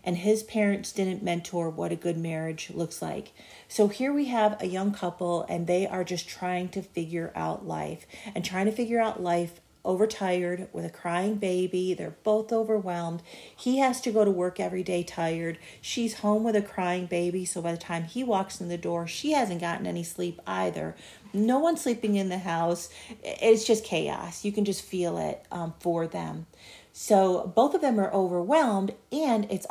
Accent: American